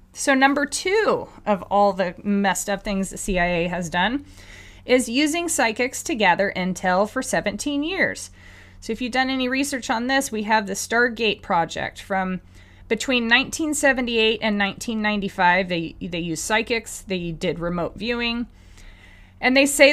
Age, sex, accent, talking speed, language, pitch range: 30-49, female, American, 155 wpm, English, 175-240 Hz